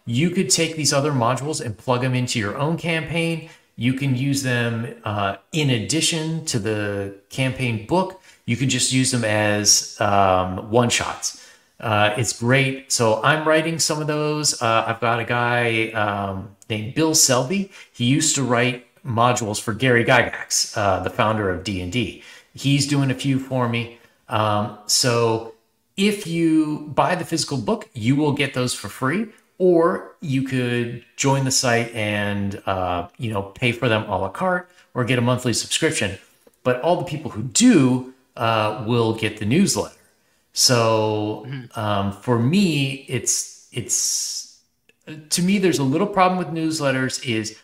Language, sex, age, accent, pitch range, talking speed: English, male, 30-49, American, 110-150 Hz, 165 wpm